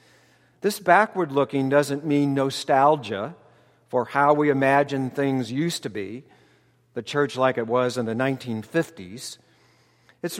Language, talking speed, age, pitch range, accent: English, 125 wpm, 50-69, 125-160 Hz, American